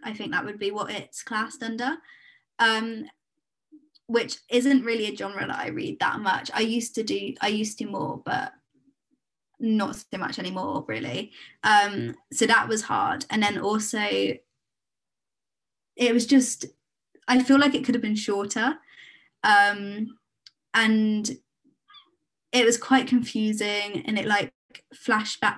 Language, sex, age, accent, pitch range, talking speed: English, female, 20-39, British, 205-255 Hz, 150 wpm